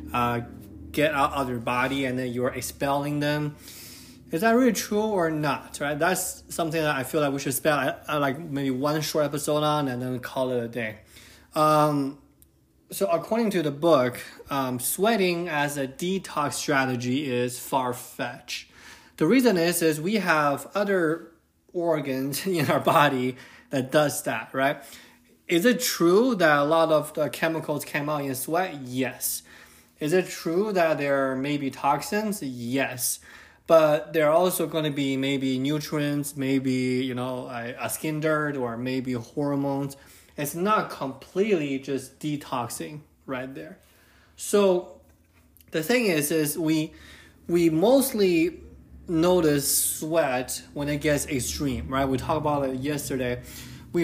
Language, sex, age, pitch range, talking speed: English, male, 20-39, 130-165 Hz, 155 wpm